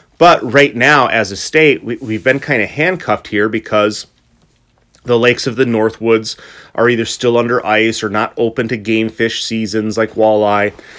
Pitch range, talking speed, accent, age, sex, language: 105-120 Hz, 175 wpm, American, 30-49, male, English